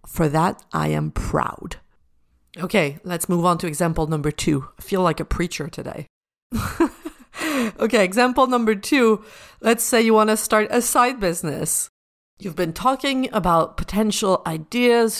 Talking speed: 150 wpm